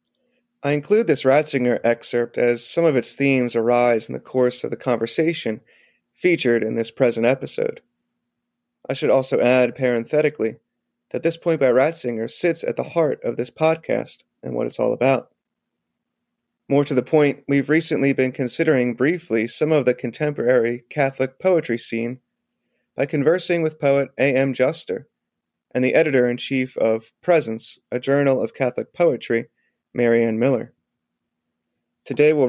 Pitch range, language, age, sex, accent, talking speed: 120-150 Hz, English, 30-49, male, American, 150 wpm